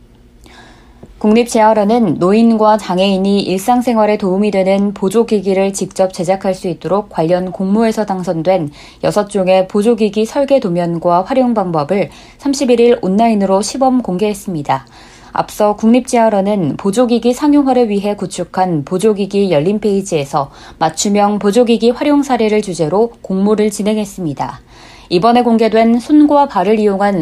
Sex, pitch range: female, 180-225 Hz